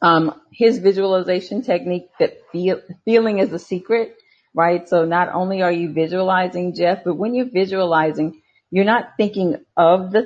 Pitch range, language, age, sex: 160-195 Hz, English, 40-59, female